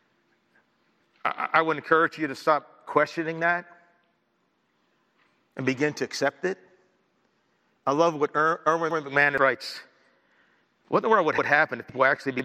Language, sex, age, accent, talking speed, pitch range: English, male, 50-69, American, 135 wpm, 145-195 Hz